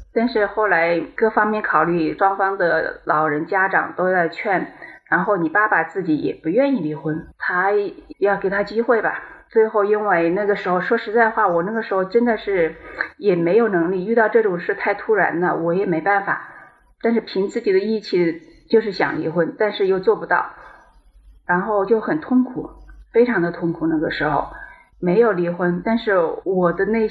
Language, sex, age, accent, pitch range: Chinese, female, 30-49, native, 175-230 Hz